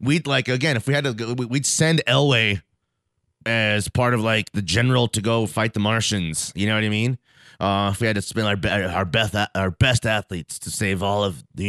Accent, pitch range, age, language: American, 80-120 Hz, 30-49, English